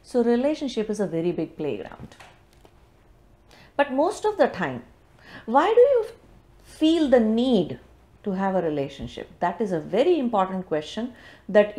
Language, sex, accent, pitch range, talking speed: English, female, Indian, 175-240 Hz, 150 wpm